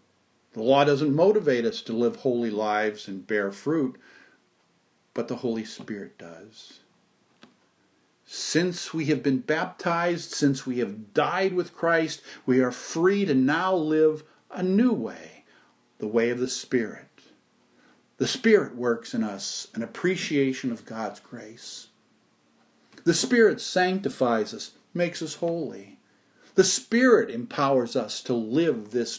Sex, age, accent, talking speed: male, 50-69, American, 135 wpm